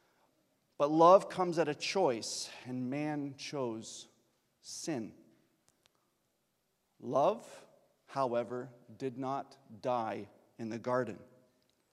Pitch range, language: 130-170 Hz, English